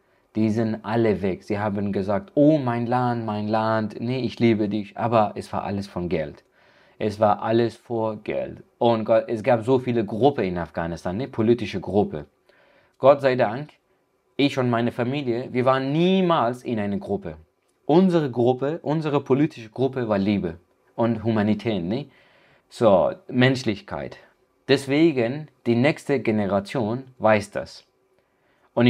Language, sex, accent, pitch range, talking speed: German, male, German, 105-130 Hz, 145 wpm